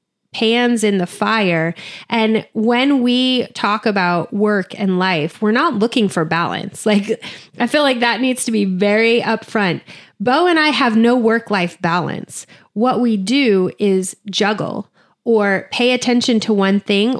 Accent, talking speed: American, 160 wpm